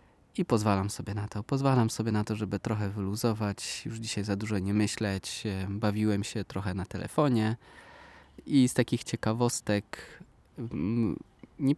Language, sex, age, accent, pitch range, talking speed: Polish, male, 20-39, native, 100-115 Hz, 145 wpm